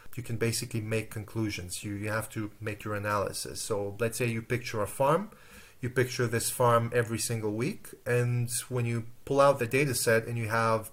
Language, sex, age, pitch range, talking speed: English, male, 30-49, 110-125 Hz, 205 wpm